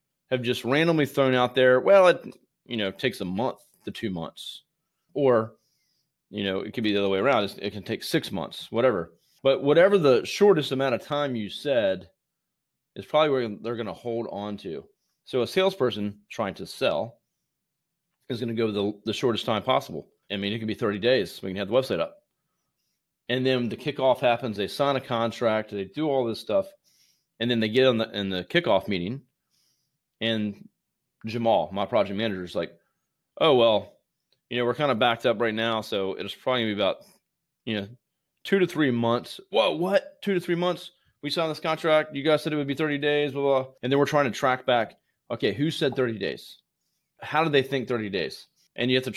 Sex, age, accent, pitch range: male, 30-49, American, 110-150 Hz